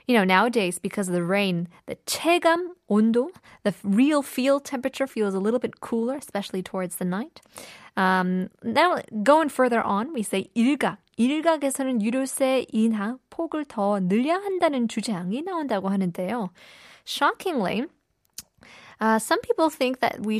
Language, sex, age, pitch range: Korean, female, 20-39, 185-265 Hz